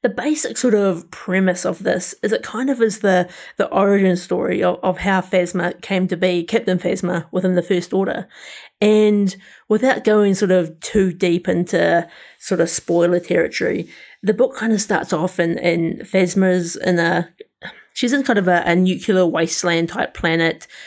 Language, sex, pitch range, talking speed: English, female, 175-205 Hz, 180 wpm